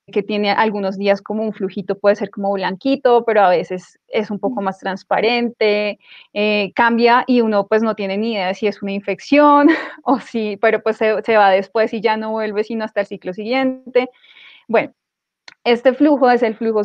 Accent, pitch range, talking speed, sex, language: Colombian, 200-235 Hz, 195 wpm, female, Spanish